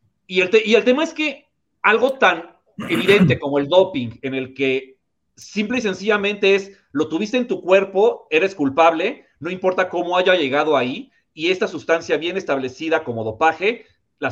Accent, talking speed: Mexican, 170 wpm